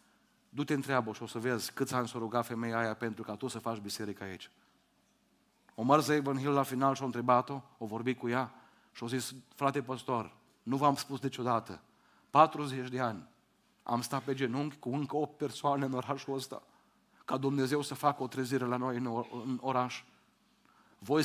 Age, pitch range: 40-59, 120-140 Hz